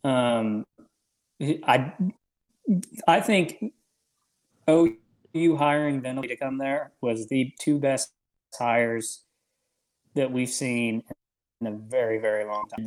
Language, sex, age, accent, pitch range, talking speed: English, male, 20-39, American, 115-140 Hz, 110 wpm